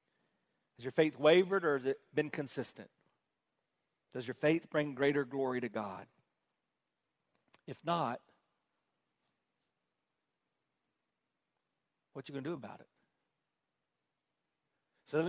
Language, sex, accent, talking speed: English, male, American, 115 wpm